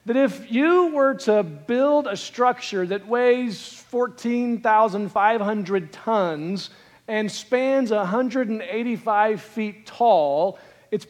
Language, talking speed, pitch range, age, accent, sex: English, 95 wpm, 195-240 Hz, 40-59, American, male